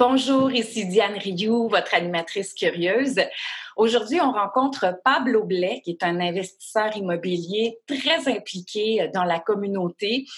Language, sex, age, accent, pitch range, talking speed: French, female, 30-49, Canadian, 175-250 Hz, 125 wpm